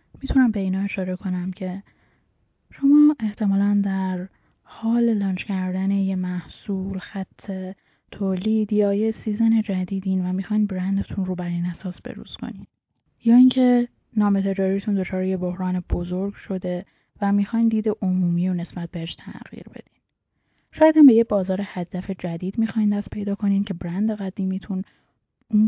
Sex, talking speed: female, 145 wpm